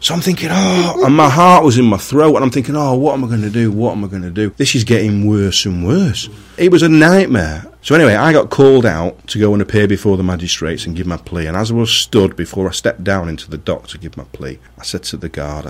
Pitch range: 90-125 Hz